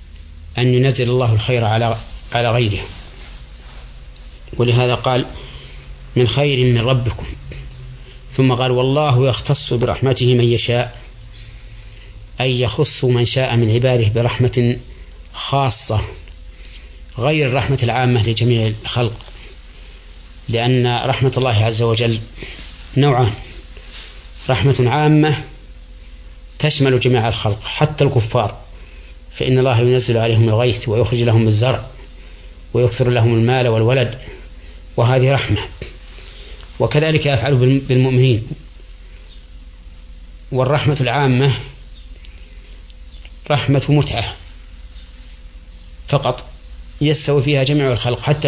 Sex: male